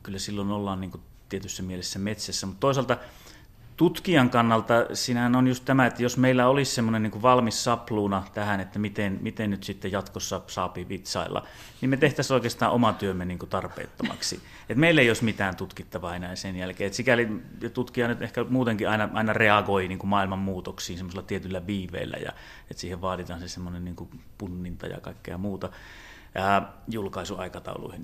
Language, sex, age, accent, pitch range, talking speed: Finnish, male, 30-49, native, 95-115 Hz, 165 wpm